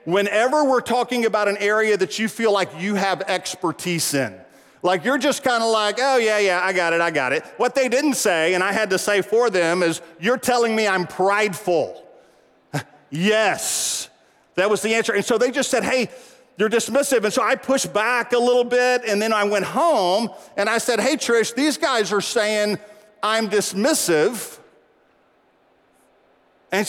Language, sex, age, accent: English, male, 40-59, American